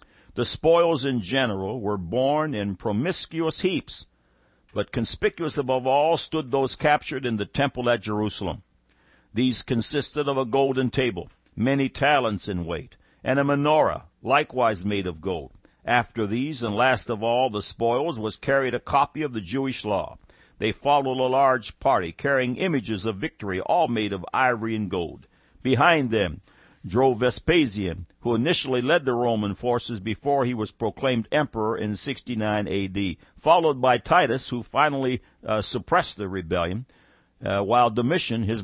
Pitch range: 105-135 Hz